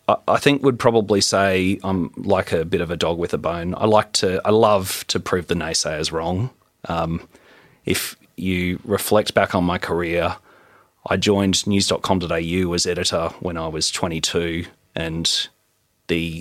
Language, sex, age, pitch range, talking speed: English, male, 30-49, 90-110 Hz, 160 wpm